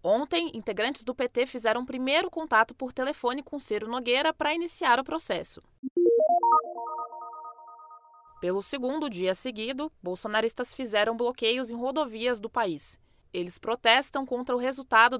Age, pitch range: 20-39, 220-275 Hz